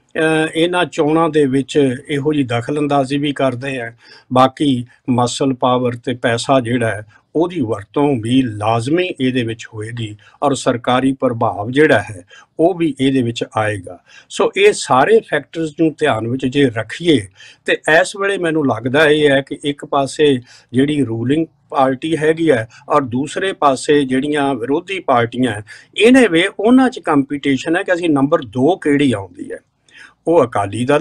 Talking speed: 155 wpm